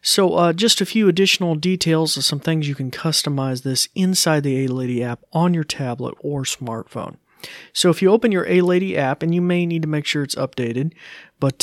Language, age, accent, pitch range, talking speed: English, 40-59, American, 135-180 Hz, 205 wpm